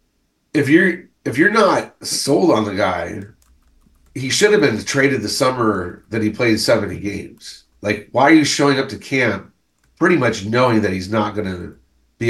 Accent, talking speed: American, 185 wpm